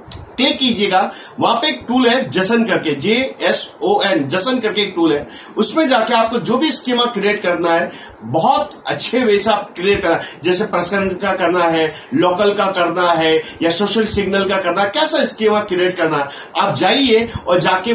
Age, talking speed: 40-59, 185 wpm